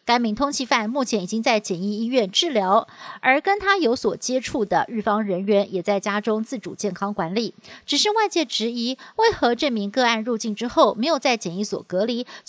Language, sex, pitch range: Chinese, female, 200-265 Hz